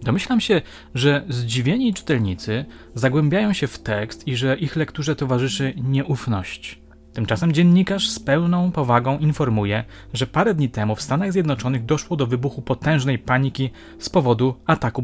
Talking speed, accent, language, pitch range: 145 wpm, native, Polish, 110-150 Hz